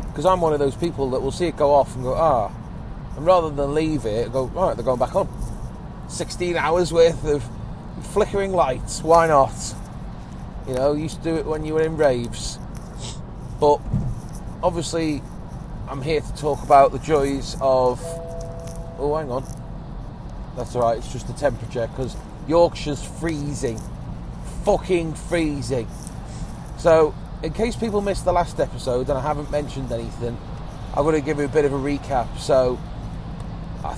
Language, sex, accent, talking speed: English, male, British, 170 wpm